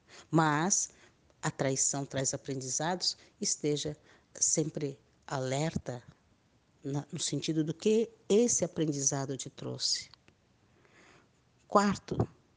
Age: 50-69